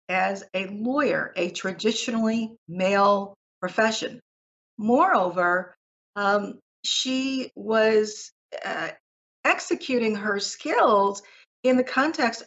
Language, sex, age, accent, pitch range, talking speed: English, female, 50-69, American, 195-235 Hz, 85 wpm